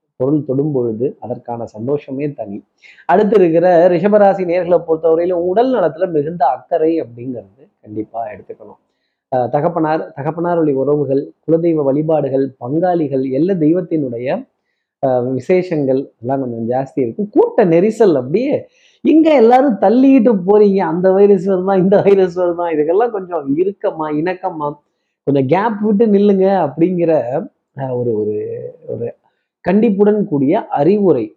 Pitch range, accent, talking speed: 140-195 Hz, native, 115 wpm